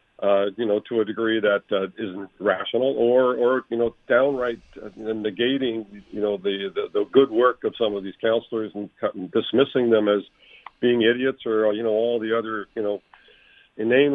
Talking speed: 180 wpm